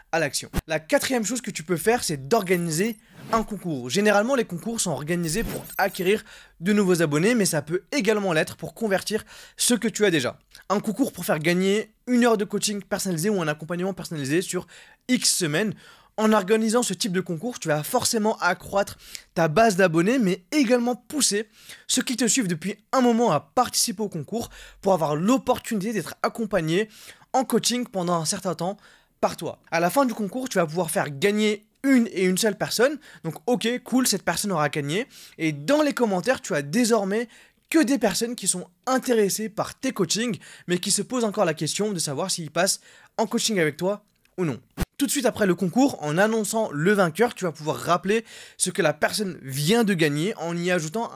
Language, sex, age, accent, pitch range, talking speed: French, male, 20-39, French, 175-230 Hz, 200 wpm